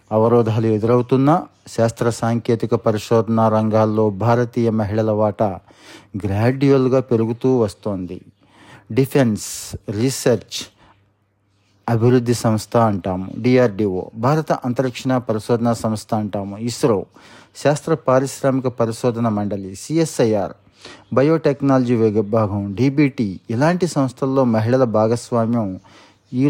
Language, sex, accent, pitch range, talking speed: Telugu, male, native, 110-130 Hz, 85 wpm